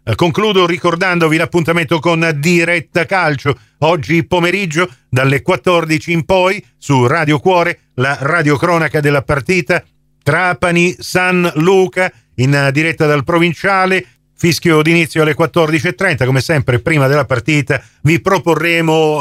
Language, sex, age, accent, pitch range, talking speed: Italian, male, 40-59, native, 135-180 Hz, 115 wpm